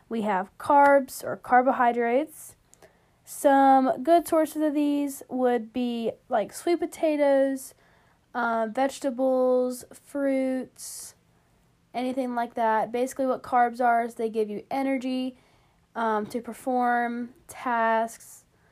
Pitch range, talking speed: 220-265 Hz, 110 wpm